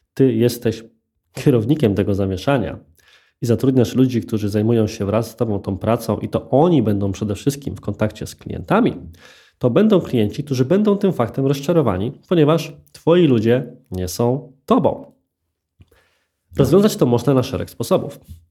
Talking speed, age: 150 wpm, 20-39